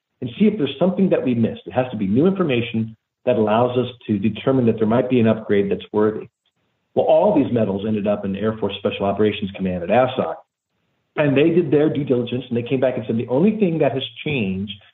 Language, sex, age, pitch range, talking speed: English, male, 50-69, 105-130 Hz, 240 wpm